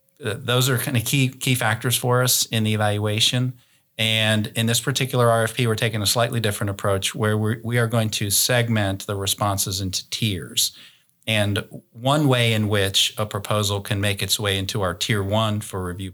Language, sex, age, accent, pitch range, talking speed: English, male, 40-59, American, 100-115 Hz, 185 wpm